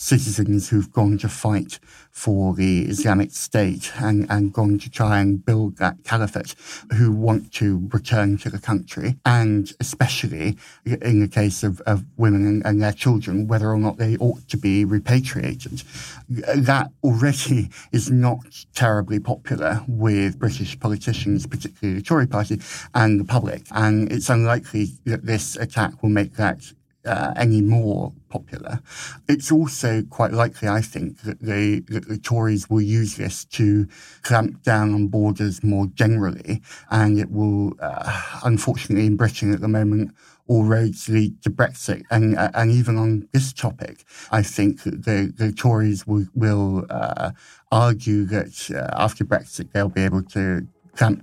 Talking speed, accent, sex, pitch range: 160 wpm, British, male, 100-115 Hz